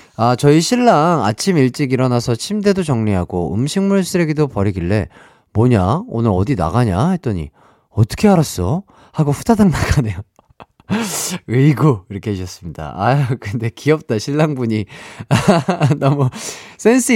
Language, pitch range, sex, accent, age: Korean, 95-155 Hz, male, native, 40-59